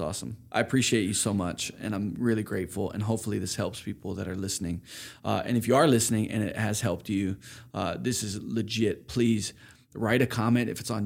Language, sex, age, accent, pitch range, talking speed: English, male, 20-39, American, 100-120 Hz, 215 wpm